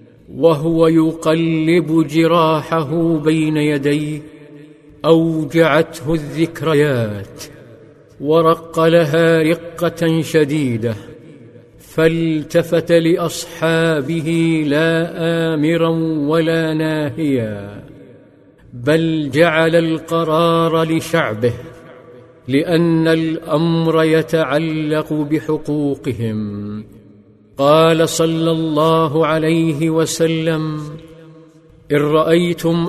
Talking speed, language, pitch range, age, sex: 60 wpm, Arabic, 145-165 Hz, 50-69, male